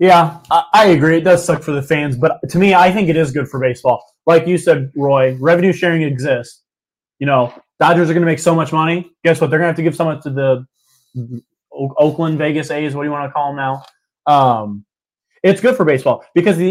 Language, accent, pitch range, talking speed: English, American, 140-180 Hz, 235 wpm